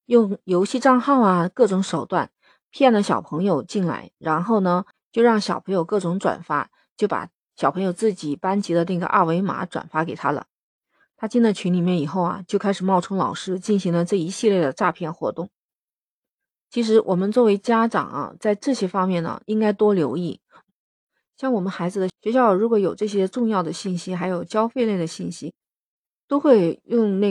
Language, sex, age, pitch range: Chinese, female, 30-49, 175-215 Hz